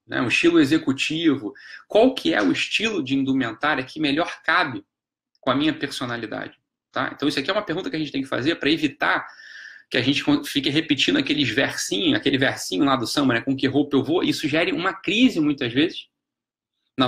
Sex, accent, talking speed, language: male, Brazilian, 205 wpm, Portuguese